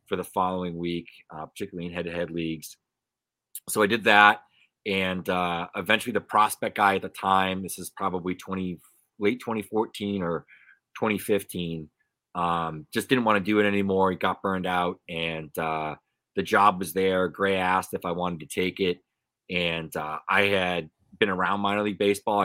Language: English